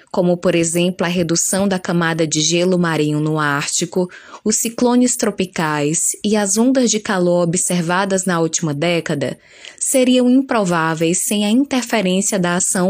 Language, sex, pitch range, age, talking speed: Portuguese, female, 170-225 Hz, 10-29, 145 wpm